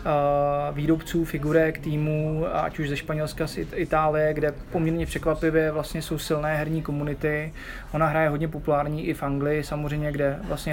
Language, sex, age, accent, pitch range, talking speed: Czech, male, 20-39, native, 145-155 Hz, 155 wpm